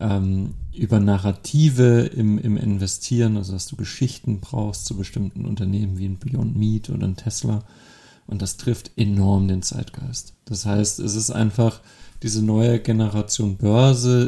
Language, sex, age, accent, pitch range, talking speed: German, male, 40-59, German, 105-130 Hz, 145 wpm